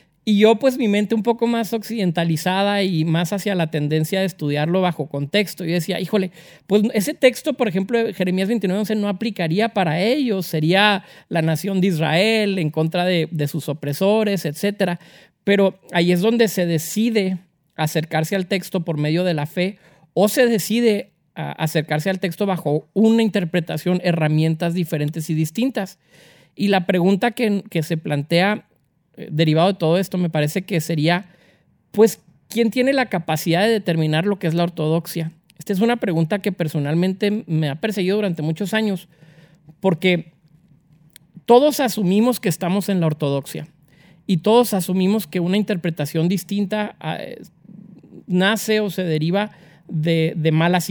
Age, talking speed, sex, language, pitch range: 40-59, 155 wpm, male, Spanish, 165-205 Hz